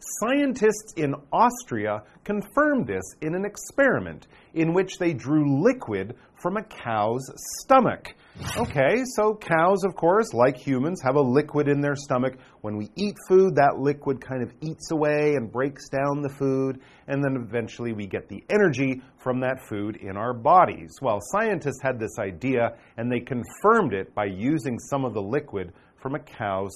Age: 40-59